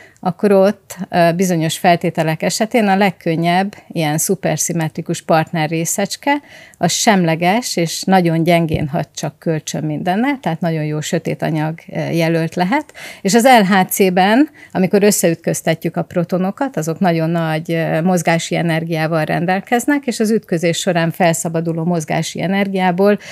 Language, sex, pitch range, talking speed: Hungarian, female, 165-195 Hz, 120 wpm